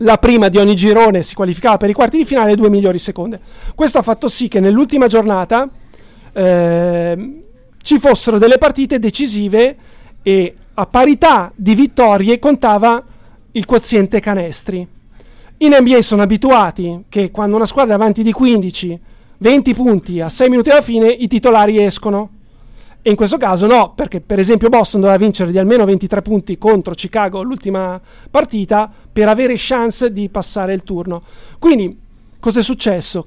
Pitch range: 195-240 Hz